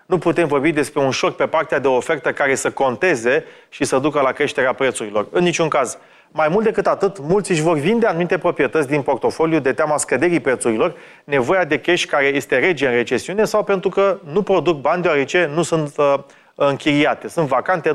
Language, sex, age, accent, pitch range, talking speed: Romanian, male, 30-49, native, 140-185 Hz, 200 wpm